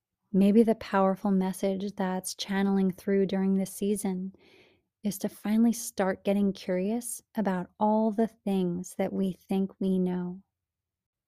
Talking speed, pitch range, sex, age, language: 135 wpm, 190-220 Hz, female, 30-49, English